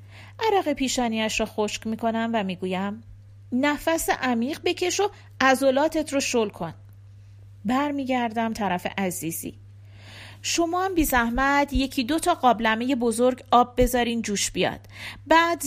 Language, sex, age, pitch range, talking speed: Persian, female, 40-59, 195-275 Hz, 120 wpm